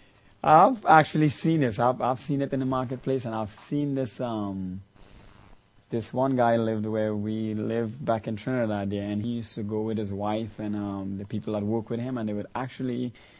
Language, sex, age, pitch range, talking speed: English, male, 30-49, 105-130 Hz, 210 wpm